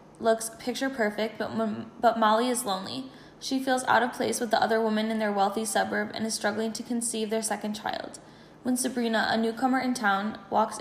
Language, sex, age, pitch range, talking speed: English, female, 10-29, 205-230 Hz, 200 wpm